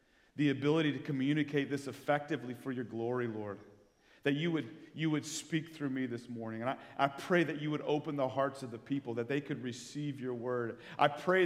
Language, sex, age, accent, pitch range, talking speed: English, male, 40-59, American, 125-170 Hz, 210 wpm